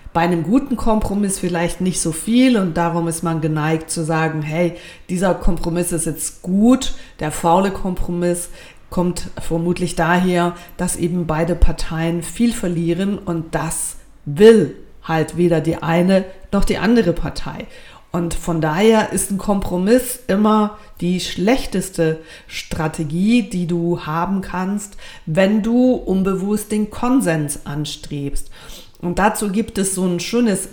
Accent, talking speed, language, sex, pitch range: German, 140 wpm, German, female, 170-205 Hz